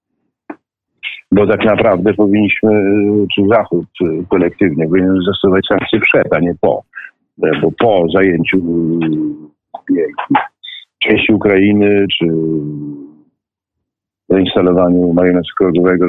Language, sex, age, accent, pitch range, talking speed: Polish, male, 50-69, native, 90-115 Hz, 90 wpm